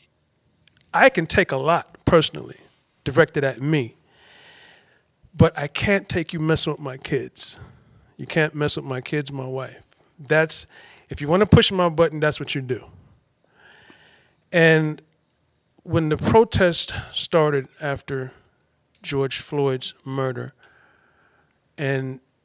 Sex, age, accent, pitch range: male, 40-59, American, 130-160 Hz